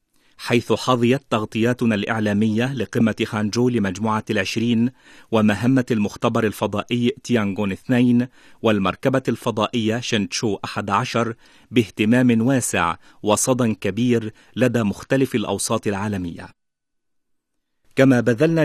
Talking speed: 85 wpm